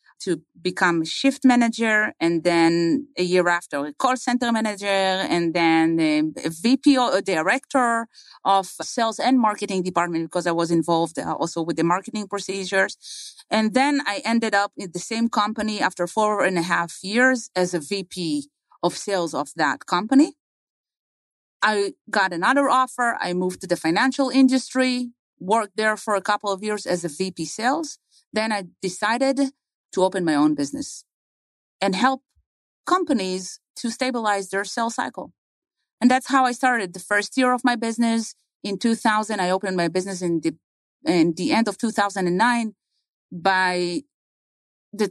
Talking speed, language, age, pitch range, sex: 160 wpm, English, 30-49, 180-245 Hz, female